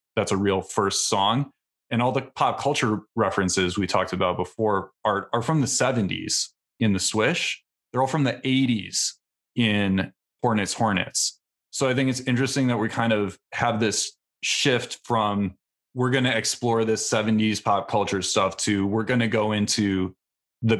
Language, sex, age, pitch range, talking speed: English, male, 30-49, 95-125 Hz, 175 wpm